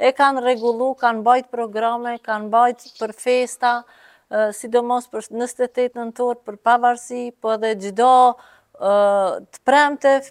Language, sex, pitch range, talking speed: English, female, 215-255 Hz, 115 wpm